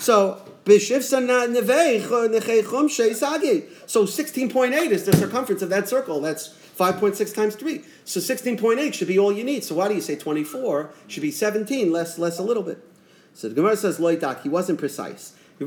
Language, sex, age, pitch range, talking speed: English, male, 40-59, 155-250 Hz, 190 wpm